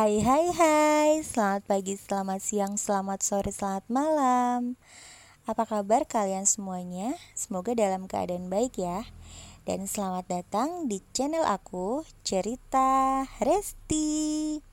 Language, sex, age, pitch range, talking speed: Indonesian, female, 20-39, 185-245 Hz, 115 wpm